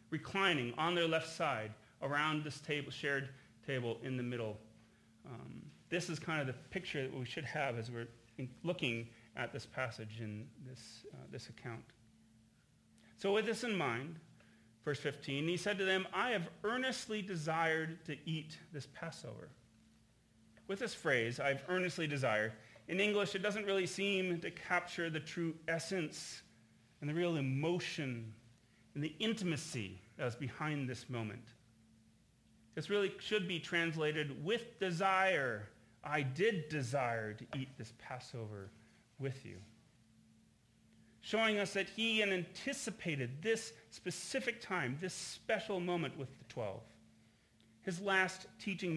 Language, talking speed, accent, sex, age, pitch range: English, 145 wpm, American, male, 40-59, 115-180 Hz